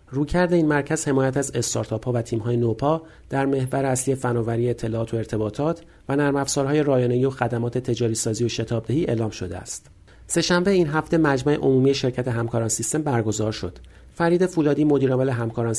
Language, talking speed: Persian, 165 wpm